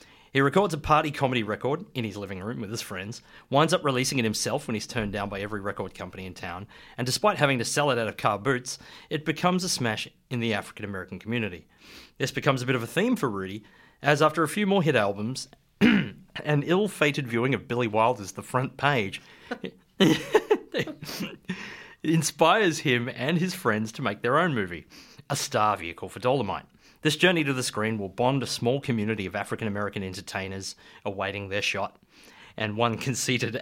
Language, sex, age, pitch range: English, male, 30-49, 105-145 Hz